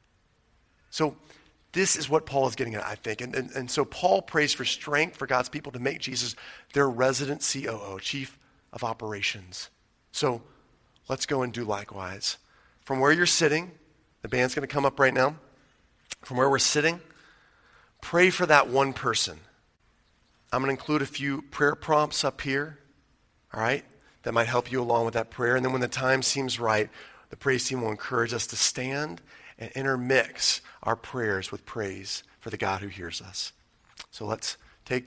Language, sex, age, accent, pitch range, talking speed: English, male, 40-59, American, 120-145 Hz, 180 wpm